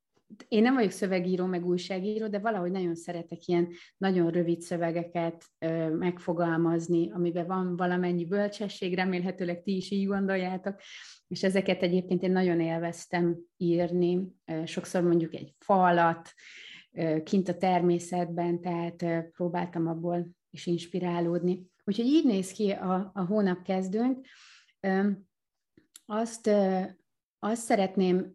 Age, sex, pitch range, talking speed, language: 30-49, female, 175-200 Hz, 115 wpm, Hungarian